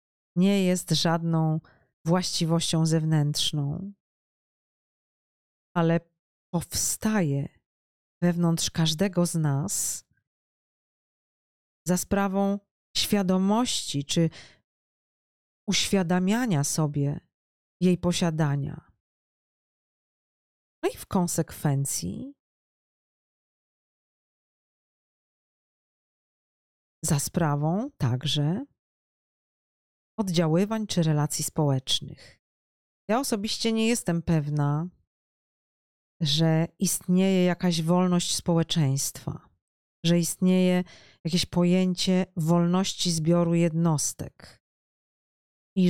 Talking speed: 65 wpm